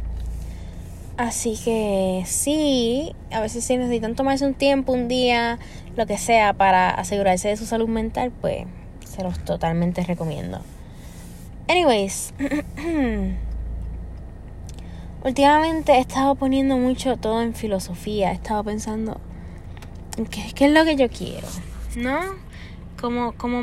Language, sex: Spanish, female